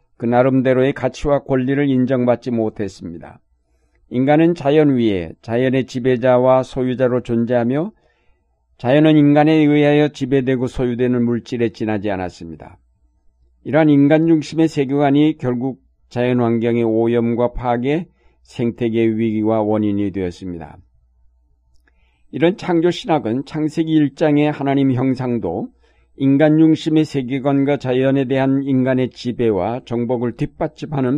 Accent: native